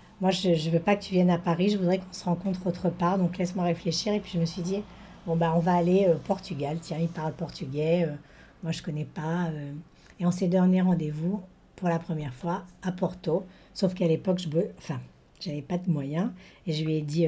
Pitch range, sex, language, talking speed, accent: 165-195 Hz, female, French, 255 wpm, French